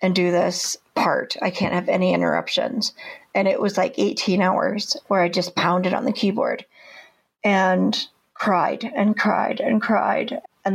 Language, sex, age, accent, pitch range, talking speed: English, female, 40-59, American, 190-235 Hz, 160 wpm